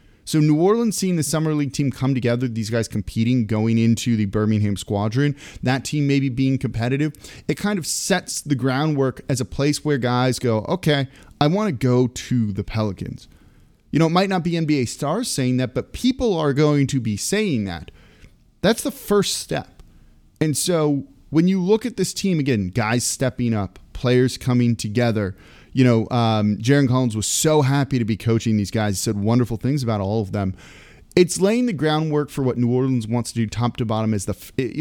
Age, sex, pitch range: 30-49, male, 110-150 Hz